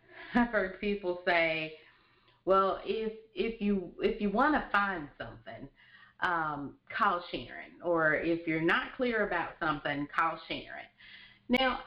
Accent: American